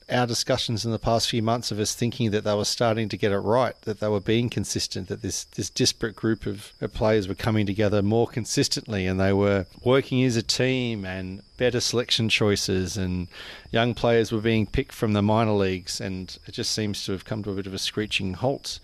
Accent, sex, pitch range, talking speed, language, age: Australian, male, 100-115 Hz, 225 wpm, English, 40-59